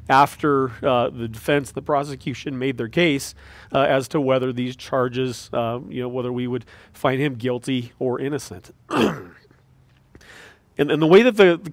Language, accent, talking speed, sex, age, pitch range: English, American, 170 wpm, male, 40-59, 125-155 Hz